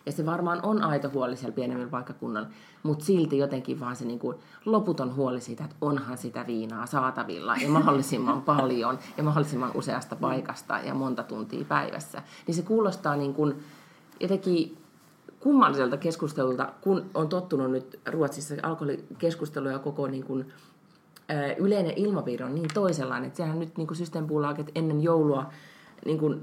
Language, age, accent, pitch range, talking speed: Finnish, 30-49, native, 130-165 Hz, 150 wpm